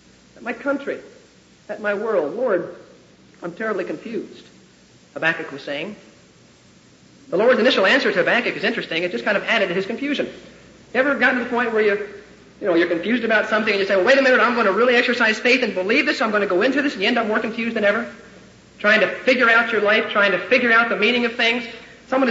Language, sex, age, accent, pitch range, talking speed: English, male, 50-69, American, 185-255 Hz, 240 wpm